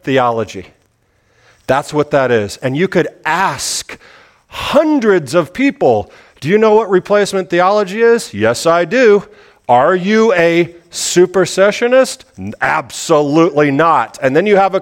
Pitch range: 140-210 Hz